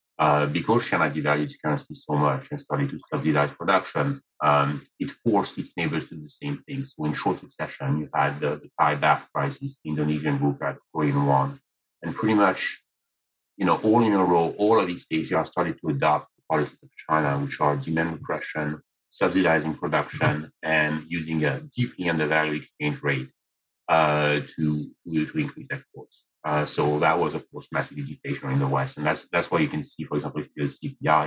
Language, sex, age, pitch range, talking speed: English, male, 40-59, 75-95 Hz, 200 wpm